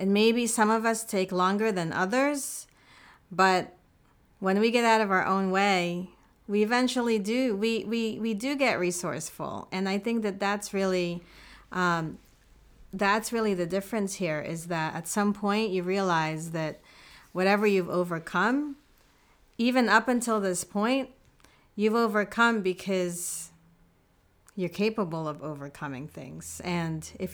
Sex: female